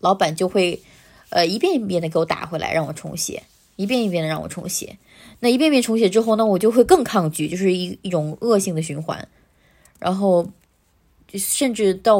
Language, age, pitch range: Chinese, 20-39, 165-200 Hz